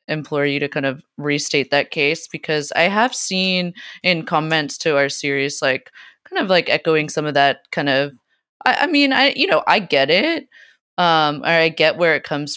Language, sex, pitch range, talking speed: English, female, 150-185 Hz, 205 wpm